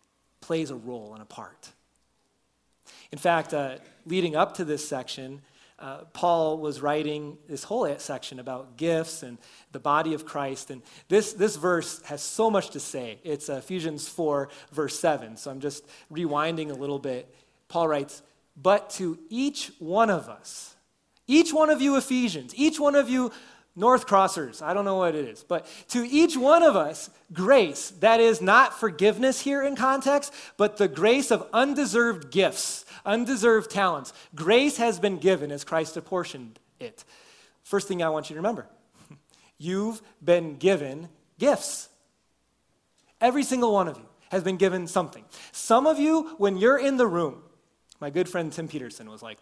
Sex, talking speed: male, 170 wpm